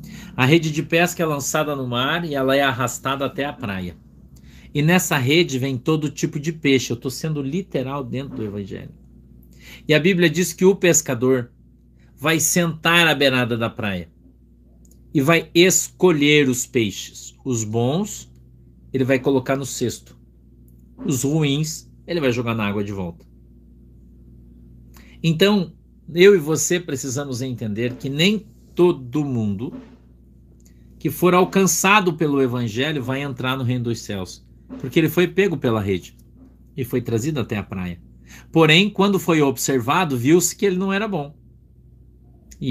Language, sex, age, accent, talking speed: Portuguese, male, 50-69, Brazilian, 150 wpm